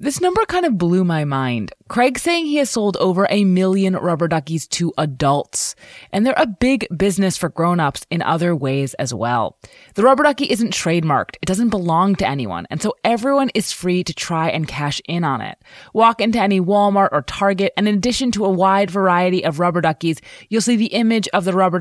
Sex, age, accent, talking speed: female, 20-39, American, 210 wpm